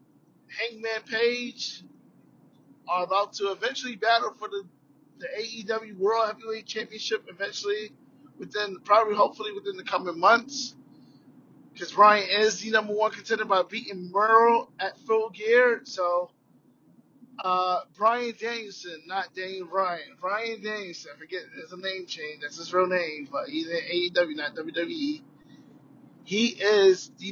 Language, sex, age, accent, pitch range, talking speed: English, male, 20-39, American, 185-230 Hz, 135 wpm